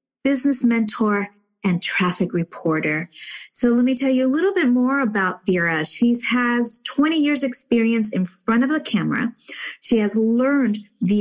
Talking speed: 160 wpm